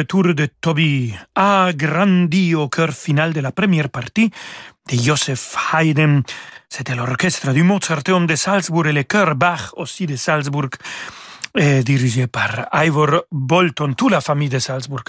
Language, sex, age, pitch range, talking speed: French, male, 40-59, 140-175 Hz, 150 wpm